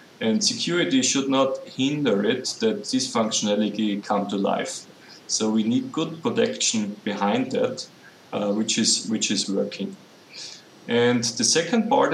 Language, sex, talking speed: English, male, 145 wpm